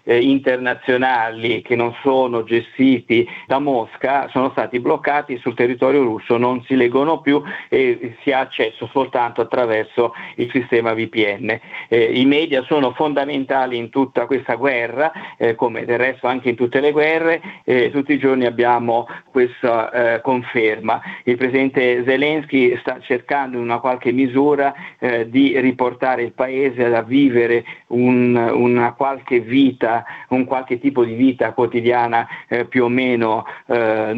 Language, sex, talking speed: Italian, male, 145 wpm